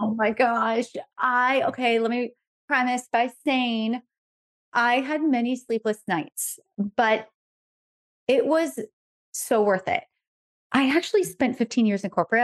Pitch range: 210-255 Hz